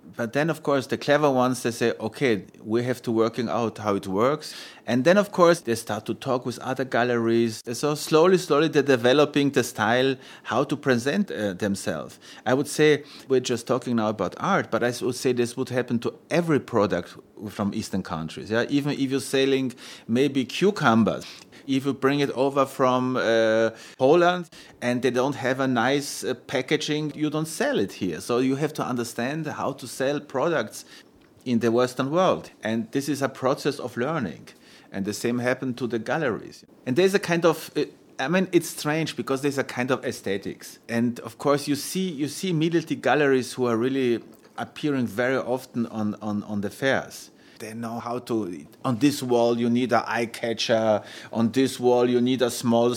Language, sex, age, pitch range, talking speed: German, male, 30-49, 120-145 Hz, 195 wpm